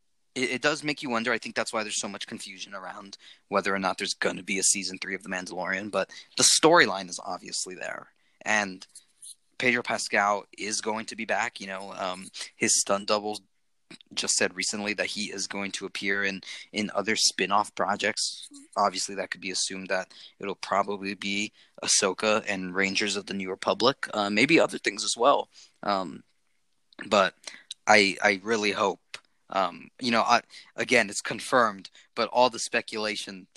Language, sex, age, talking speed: English, male, 20-39, 180 wpm